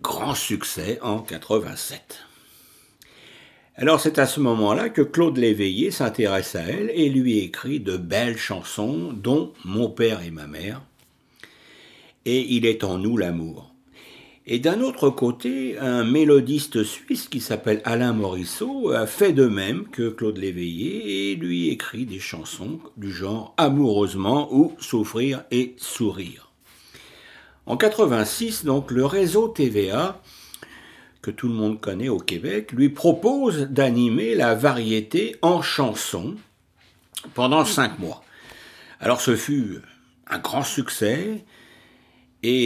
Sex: male